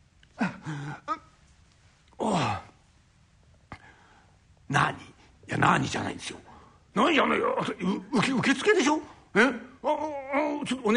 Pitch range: 195-270 Hz